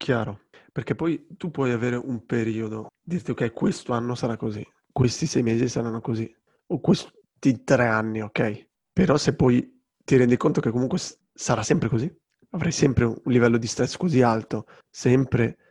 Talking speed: 170 wpm